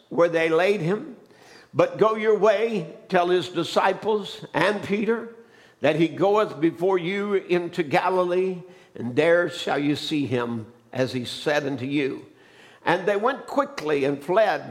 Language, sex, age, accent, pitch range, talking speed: English, male, 60-79, American, 150-190 Hz, 150 wpm